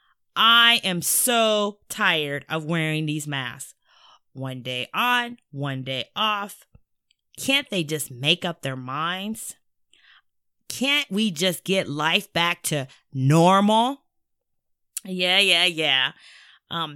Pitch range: 140-200 Hz